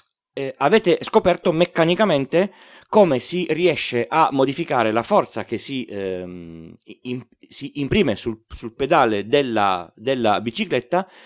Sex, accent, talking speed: male, native, 110 wpm